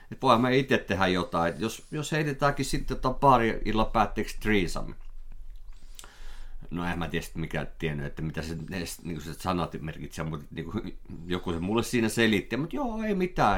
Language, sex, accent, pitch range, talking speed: Finnish, male, native, 80-110 Hz, 175 wpm